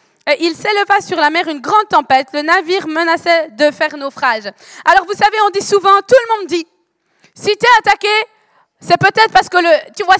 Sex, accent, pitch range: female, French, 310-405 Hz